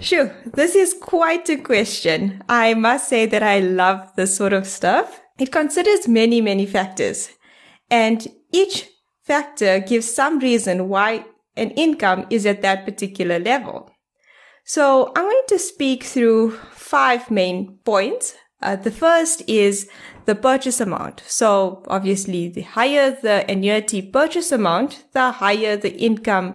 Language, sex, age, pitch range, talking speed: English, female, 20-39, 195-260 Hz, 140 wpm